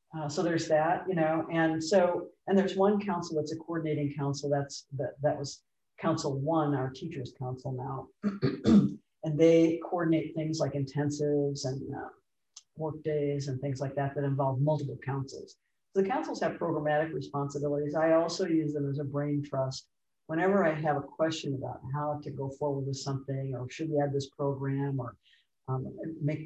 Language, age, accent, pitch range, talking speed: English, 50-69, American, 135-160 Hz, 180 wpm